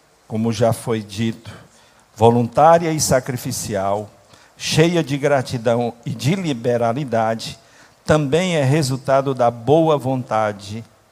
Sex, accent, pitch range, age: male, Brazilian, 115-155 Hz, 50-69